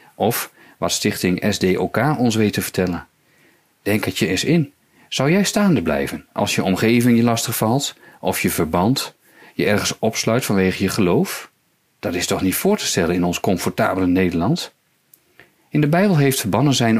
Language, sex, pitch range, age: Dutch, male, 95-135 Hz, 40-59